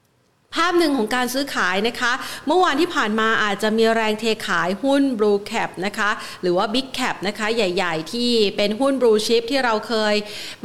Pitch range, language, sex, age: 210-250 Hz, Thai, female, 30-49